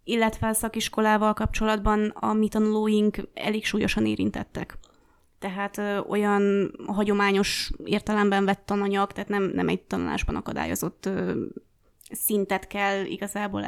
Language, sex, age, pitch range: Hungarian, female, 20-39, 200-215 Hz